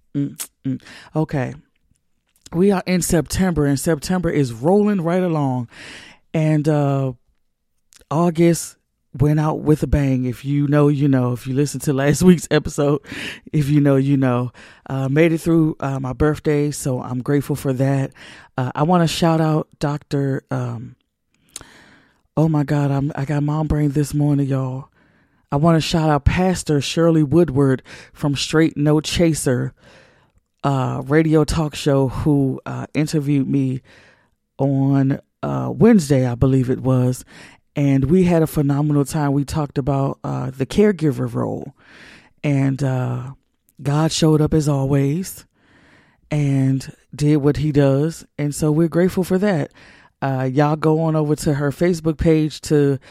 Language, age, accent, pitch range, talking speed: English, 40-59, American, 135-155 Hz, 150 wpm